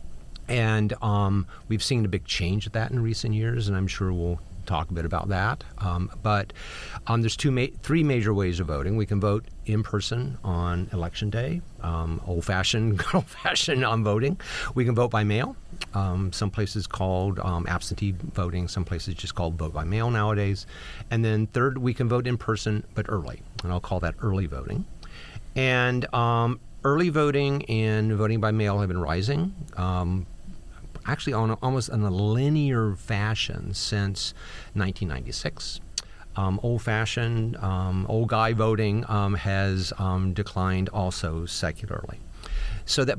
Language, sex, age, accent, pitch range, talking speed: English, male, 50-69, American, 90-115 Hz, 160 wpm